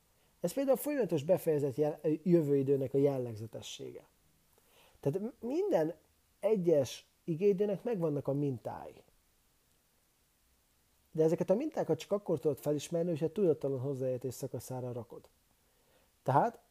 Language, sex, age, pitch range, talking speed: English, male, 30-49, 135-170 Hz, 105 wpm